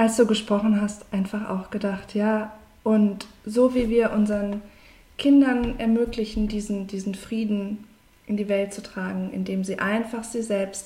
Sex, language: female, German